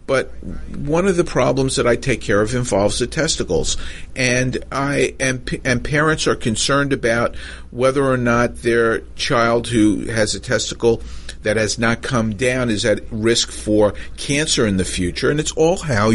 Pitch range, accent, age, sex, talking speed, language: 105-140 Hz, American, 50-69, male, 170 wpm, English